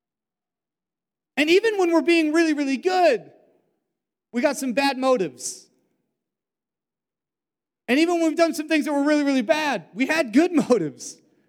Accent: American